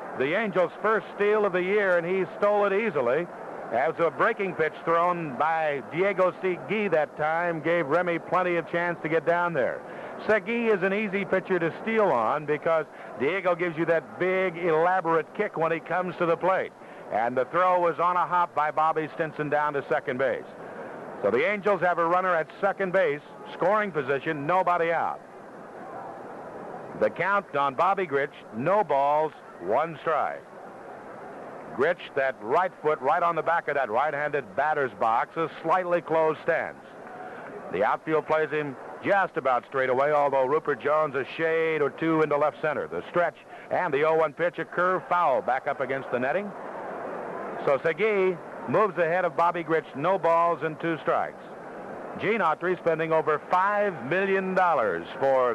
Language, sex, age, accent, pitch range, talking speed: English, male, 60-79, American, 155-185 Hz, 170 wpm